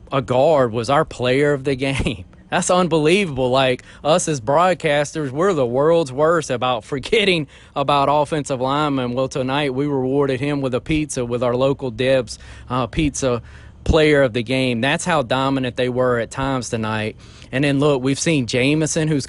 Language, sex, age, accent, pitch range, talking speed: English, male, 30-49, American, 120-145 Hz, 175 wpm